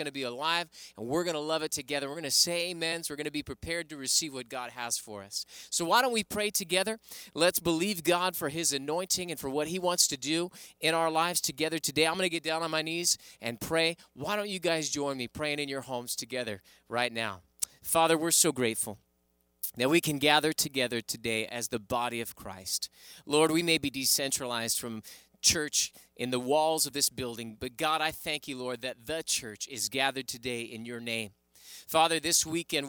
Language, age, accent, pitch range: English, 30-49, American, 130-170 Hz